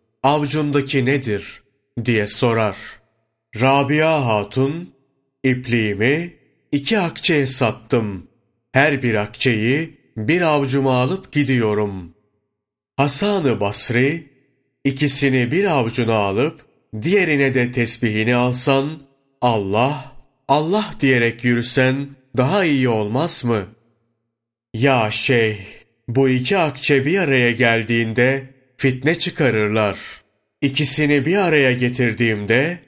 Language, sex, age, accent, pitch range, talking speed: Turkish, male, 30-49, native, 115-140 Hz, 90 wpm